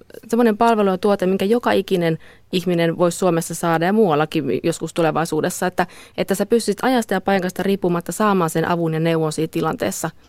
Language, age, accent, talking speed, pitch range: Finnish, 20-39, native, 165 wpm, 170-200 Hz